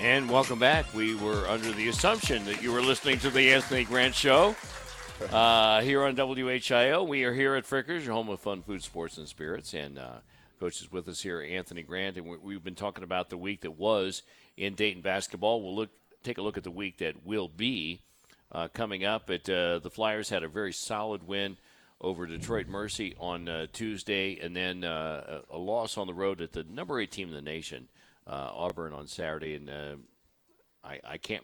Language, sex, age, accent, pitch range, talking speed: English, male, 50-69, American, 85-110 Hz, 210 wpm